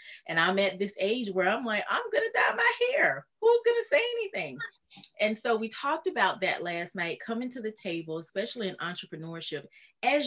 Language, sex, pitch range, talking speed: English, female, 175-230 Hz, 205 wpm